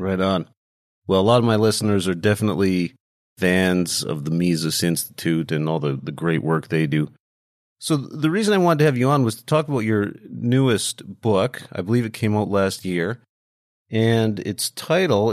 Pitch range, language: 95-125 Hz, English